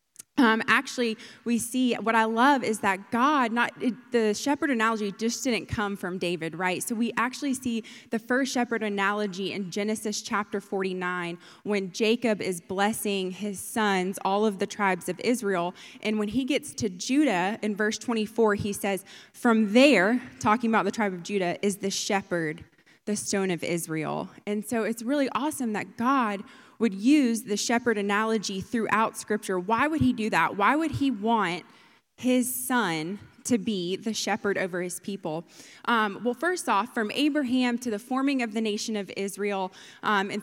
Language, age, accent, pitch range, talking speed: Polish, 20-39, American, 200-240 Hz, 175 wpm